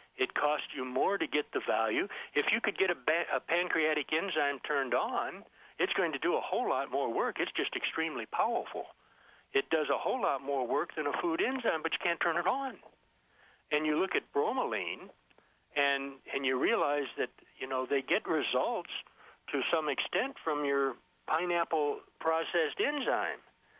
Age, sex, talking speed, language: 60-79, male, 180 wpm, English